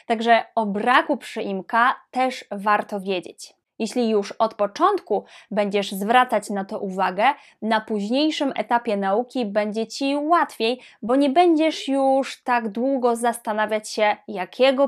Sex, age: female, 20-39